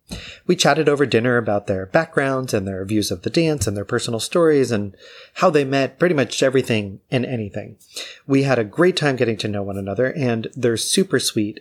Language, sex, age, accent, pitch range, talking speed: English, male, 30-49, American, 105-130 Hz, 205 wpm